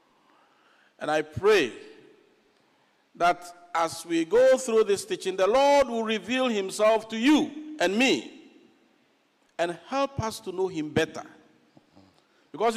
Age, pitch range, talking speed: 50-69, 180-290 Hz, 125 wpm